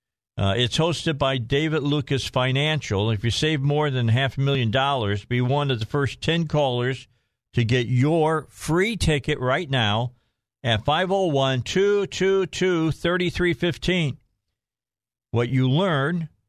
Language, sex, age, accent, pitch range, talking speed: English, male, 50-69, American, 120-160 Hz, 125 wpm